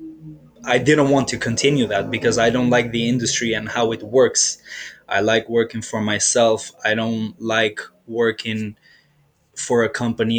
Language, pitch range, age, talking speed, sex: English, 110-125 Hz, 20-39, 160 wpm, male